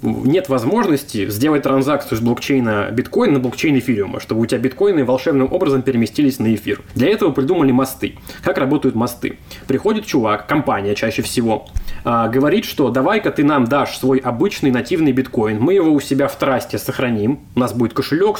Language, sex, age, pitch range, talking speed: Russian, male, 20-39, 120-140 Hz, 170 wpm